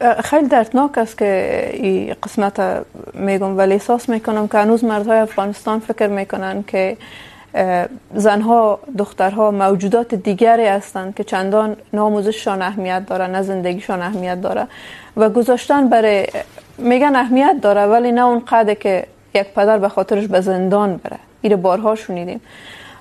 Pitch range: 195-230 Hz